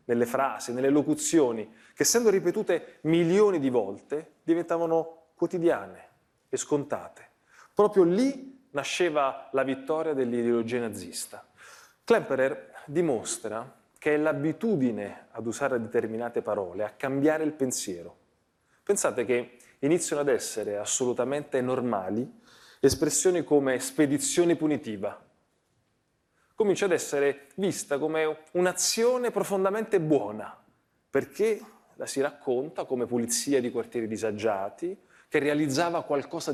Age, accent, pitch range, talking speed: 30-49, native, 125-180 Hz, 105 wpm